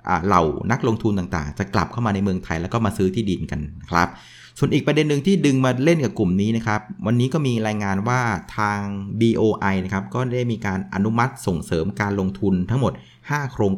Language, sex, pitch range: Thai, male, 95-125 Hz